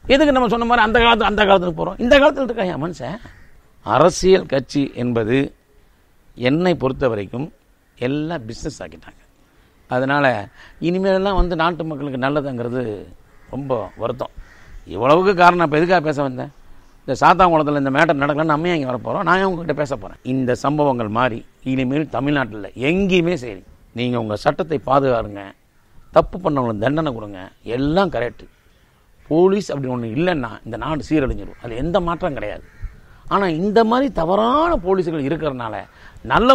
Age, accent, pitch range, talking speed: 50-69, native, 130-200 Hz, 140 wpm